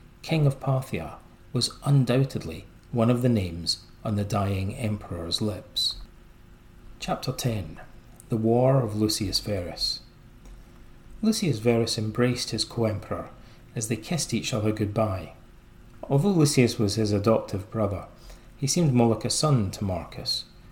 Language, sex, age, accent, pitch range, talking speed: English, male, 30-49, British, 105-130 Hz, 135 wpm